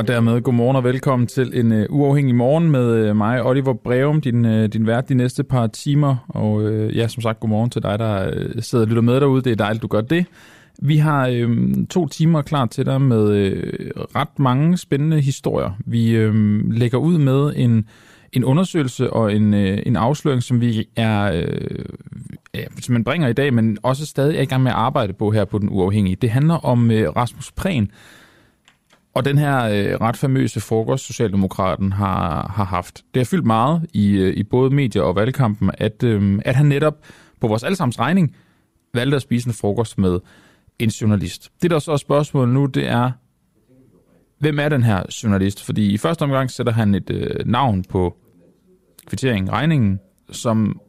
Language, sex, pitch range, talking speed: Danish, male, 105-135 Hz, 195 wpm